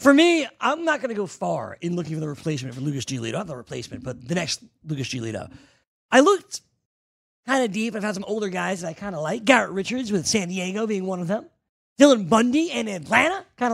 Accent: American